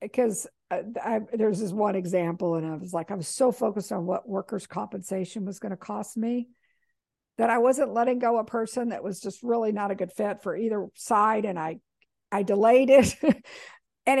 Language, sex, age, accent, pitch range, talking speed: English, female, 60-79, American, 195-255 Hz, 205 wpm